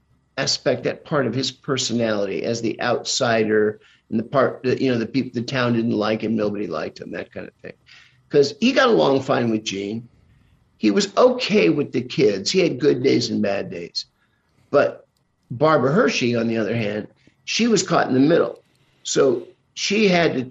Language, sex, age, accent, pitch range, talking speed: English, male, 50-69, American, 115-150 Hz, 195 wpm